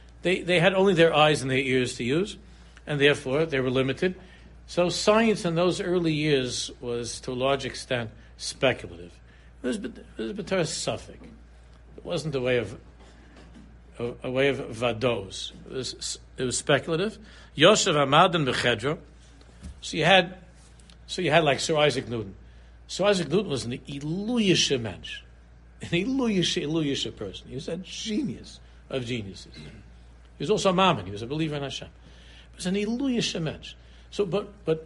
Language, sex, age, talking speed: English, male, 60-79, 160 wpm